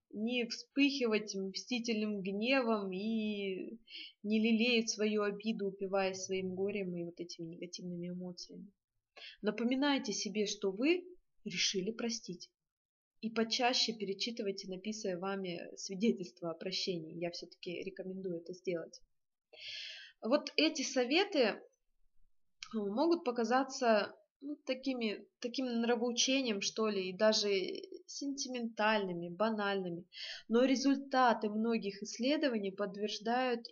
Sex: female